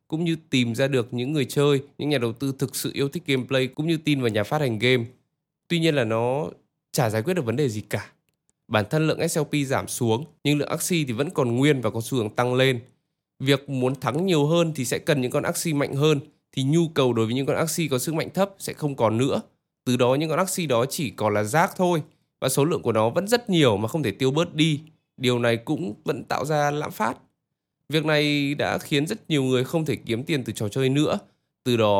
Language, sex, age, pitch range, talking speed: Vietnamese, male, 20-39, 115-155 Hz, 255 wpm